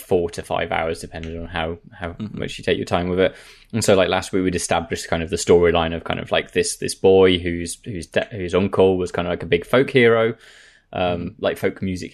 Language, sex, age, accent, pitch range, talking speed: English, male, 20-39, British, 95-125 Hz, 240 wpm